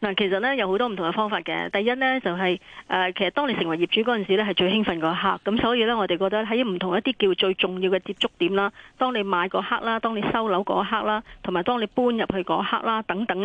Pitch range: 185-225 Hz